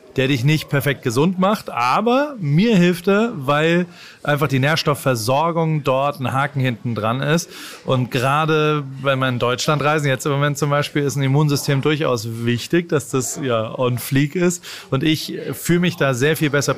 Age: 30-49